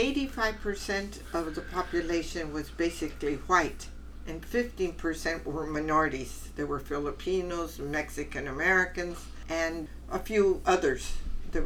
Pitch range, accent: 150-190 Hz, American